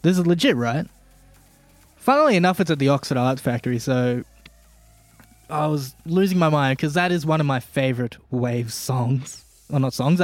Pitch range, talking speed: 130-170 Hz, 175 wpm